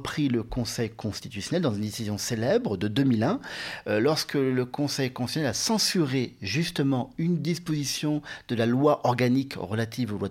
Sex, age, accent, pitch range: male, 40-59, French, 125-175 Hz